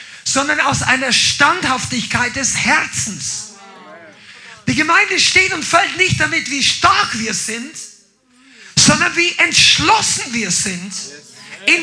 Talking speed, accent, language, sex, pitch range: 115 wpm, German, German, male, 185-310 Hz